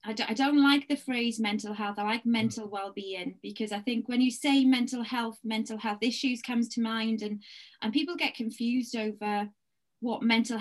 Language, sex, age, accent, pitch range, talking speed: English, female, 20-39, British, 205-235 Hz, 185 wpm